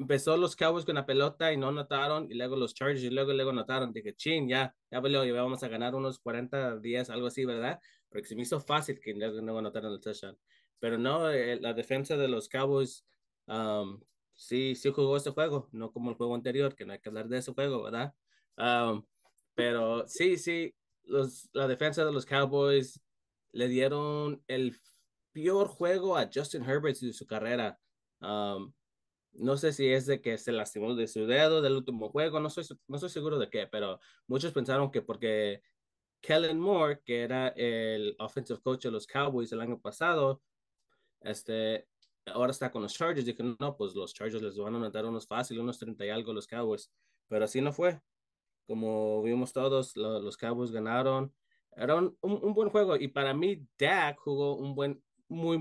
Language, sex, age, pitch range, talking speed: Spanish, male, 20-39, 115-140 Hz, 195 wpm